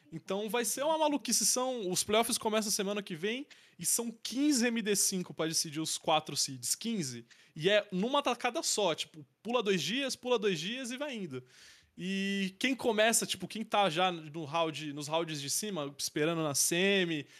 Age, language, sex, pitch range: 20-39, Portuguese, male, 155-210 Hz